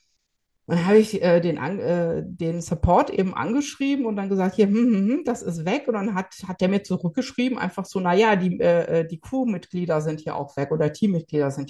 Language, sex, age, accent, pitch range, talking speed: German, female, 50-69, German, 170-230 Hz, 215 wpm